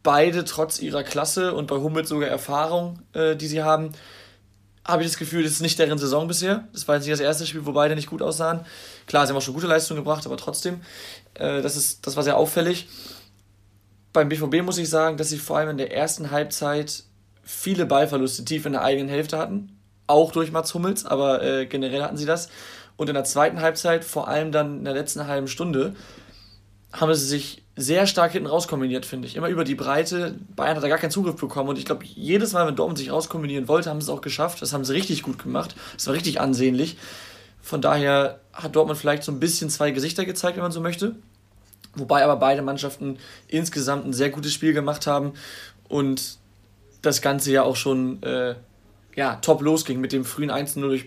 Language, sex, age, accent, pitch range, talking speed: German, male, 20-39, German, 135-160 Hz, 210 wpm